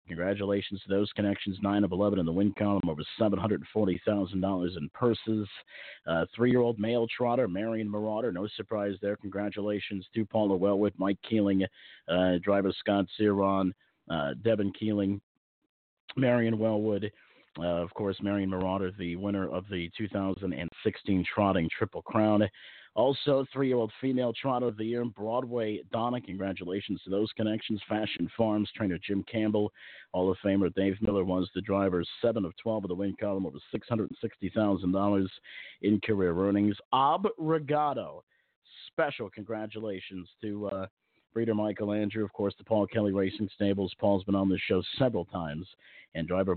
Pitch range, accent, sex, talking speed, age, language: 95-110 Hz, American, male, 145 wpm, 50-69, English